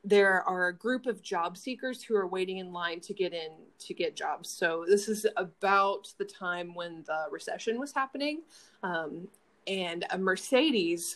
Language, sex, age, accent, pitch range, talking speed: English, female, 20-39, American, 180-235 Hz, 175 wpm